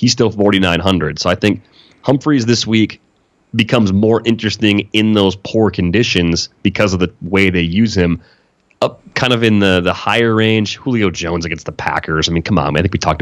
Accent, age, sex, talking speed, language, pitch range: American, 30-49, male, 200 wpm, English, 85-105 Hz